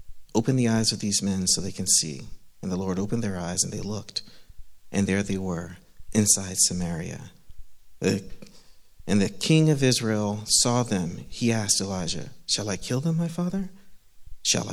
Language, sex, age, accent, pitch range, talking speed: English, male, 50-69, American, 95-125 Hz, 170 wpm